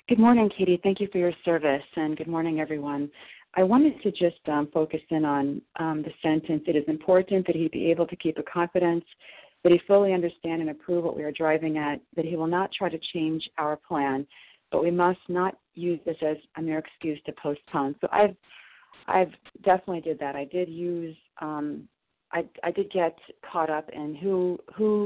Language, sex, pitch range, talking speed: English, female, 155-180 Hz, 205 wpm